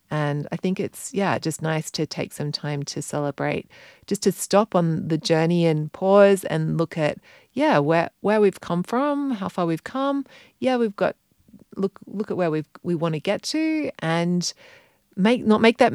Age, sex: 30-49, female